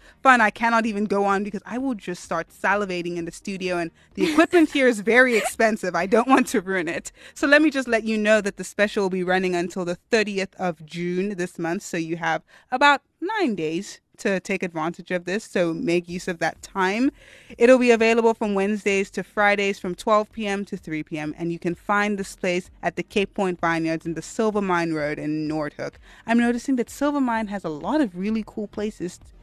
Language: English